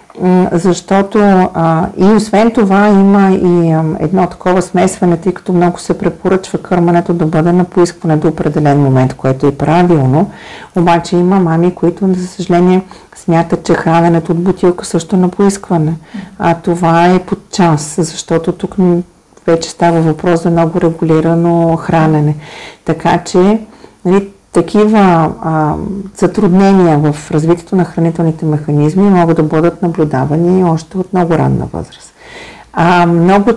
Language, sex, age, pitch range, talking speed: Bulgarian, female, 50-69, 165-195 Hz, 135 wpm